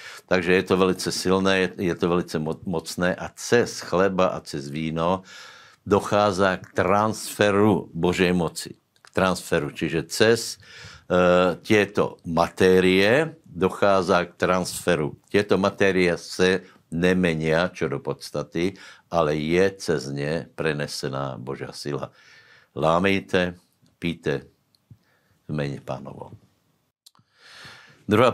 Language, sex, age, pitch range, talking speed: Slovak, male, 60-79, 80-95 Hz, 105 wpm